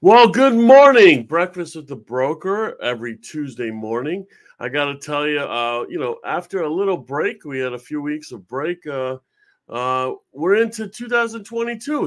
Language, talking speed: English, 170 wpm